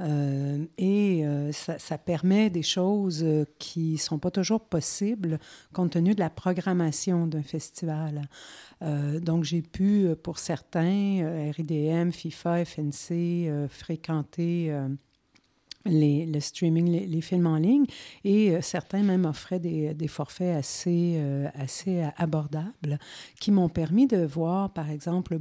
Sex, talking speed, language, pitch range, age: female, 145 wpm, French, 160-185 Hz, 50-69